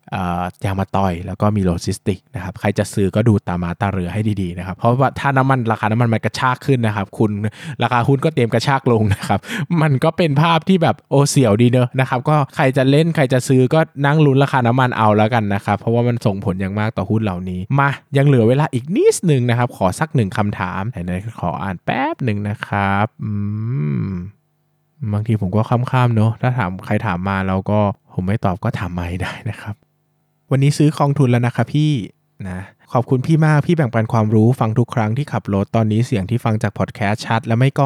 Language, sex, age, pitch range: Thai, male, 20-39, 100-130 Hz